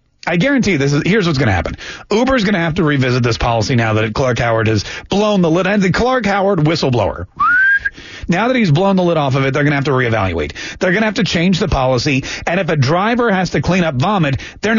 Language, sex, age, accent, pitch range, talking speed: English, male, 40-59, American, 140-205 Hz, 255 wpm